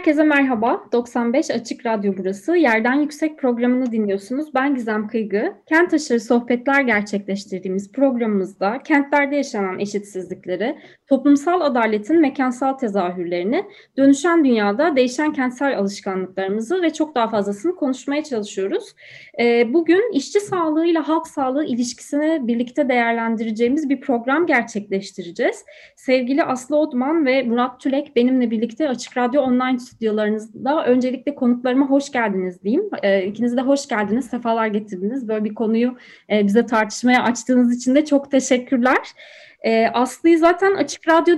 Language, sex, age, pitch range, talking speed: Turkish, female, 20-39, 225-295 Hz, 120 wpm